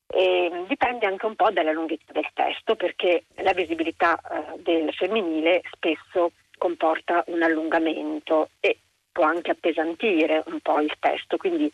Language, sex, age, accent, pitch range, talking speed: Italian, female, 40-59, native, 160-205 Hz, 145 wpm